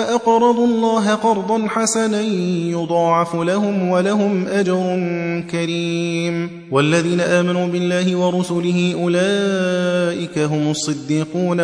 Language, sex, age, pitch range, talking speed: Arabic, male, 30-49, 145-170 Hz, 85 wpm